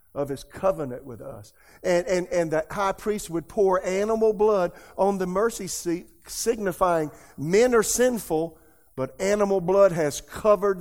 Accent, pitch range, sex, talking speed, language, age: American, 160-200 Hz, male, 155 wpm, English, 50-69